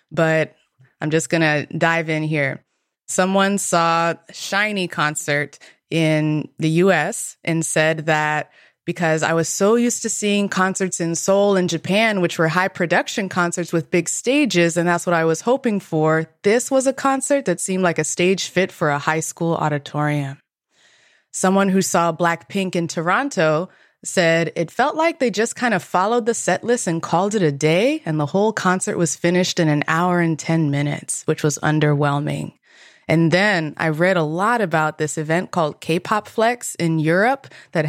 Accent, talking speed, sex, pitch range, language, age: American, 180 wpm, female, 155-195 Hz, English, 20-39